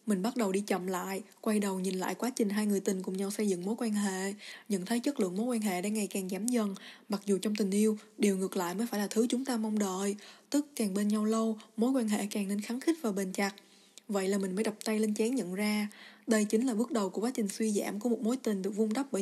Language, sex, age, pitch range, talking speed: Vietnamese, female, 20-39, 200-230 Hz, 290 wpm